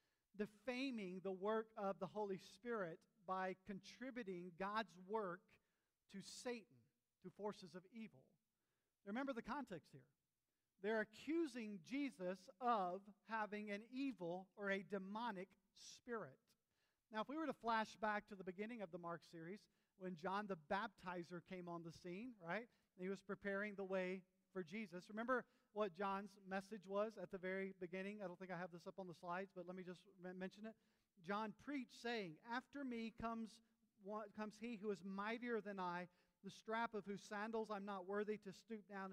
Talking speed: 175 wpm